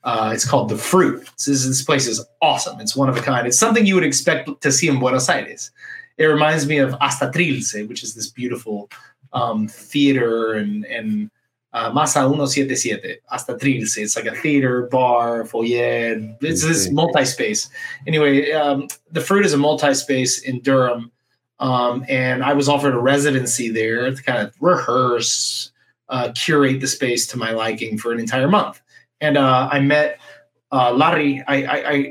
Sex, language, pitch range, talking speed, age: male, English, 125-150 Hz, 175 wpm, 30-49